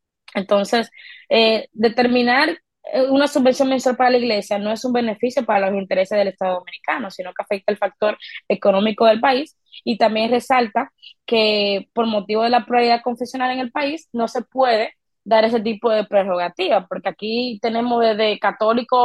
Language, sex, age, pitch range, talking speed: Spanish, female, 20-39, 205-245 Hz, 165 wpm